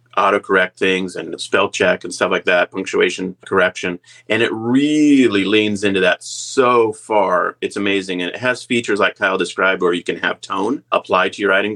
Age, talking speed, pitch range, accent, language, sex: 30-49, 190 wpm, 100-125 Hz, American, English, male